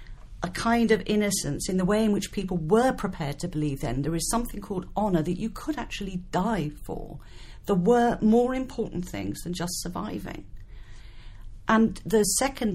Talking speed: 175 wpm